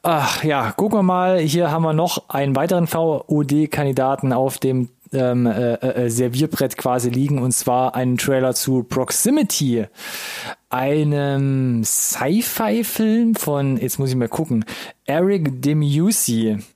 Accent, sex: German, male